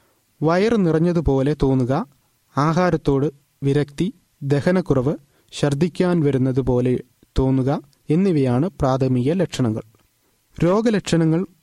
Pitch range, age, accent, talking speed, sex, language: 135-170 Hz, 30-49, native, 70 wpm, male, Malayalam